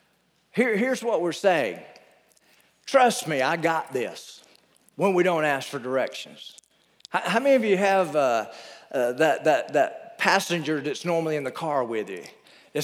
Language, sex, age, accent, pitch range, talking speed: English, male, 50-69, American, 150-220 Hz, 170 wpm